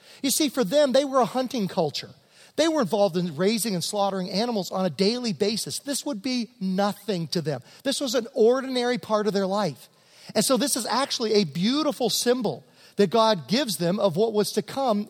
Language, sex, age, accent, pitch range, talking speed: English, male, 40-59, American, 185-240 Hz, 205 wpm